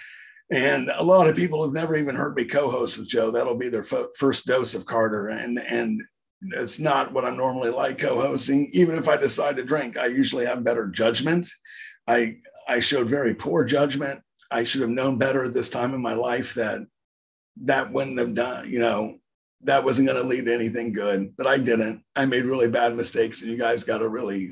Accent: American